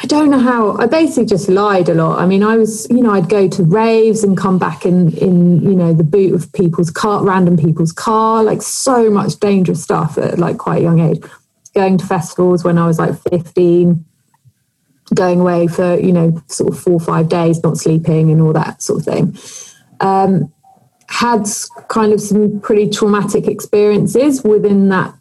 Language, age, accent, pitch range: English, 30-49, British, 175-220 Hz